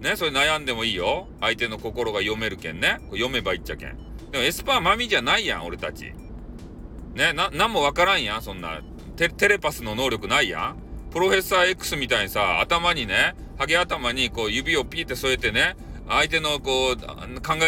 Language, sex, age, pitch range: Japanese, male, 40-59, 110-185 Hz